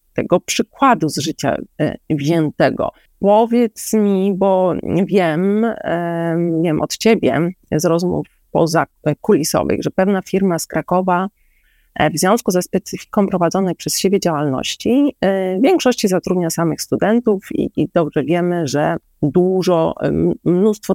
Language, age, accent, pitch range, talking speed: Polish, 30-49, native, 165-215 Hz, 115 wpm